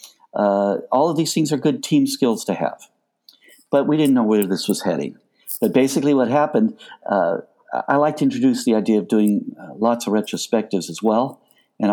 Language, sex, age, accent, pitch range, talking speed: English, male, 50-69, American, 105-175 Hz, 195 wpm